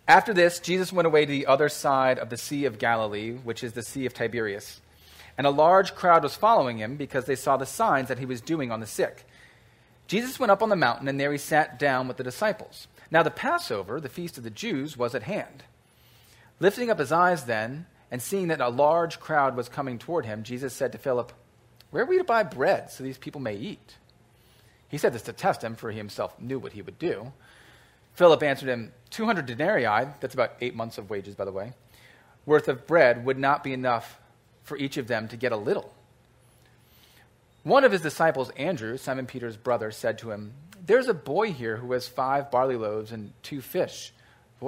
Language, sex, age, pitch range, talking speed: English, male, 30-49, 115-150 Hz, 215 wpm